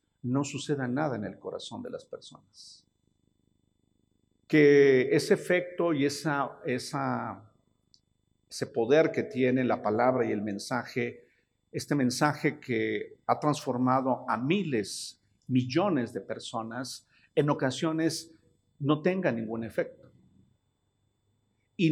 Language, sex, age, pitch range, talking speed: Spanish, male, 50-69, 120-150 Hz, 105 wpm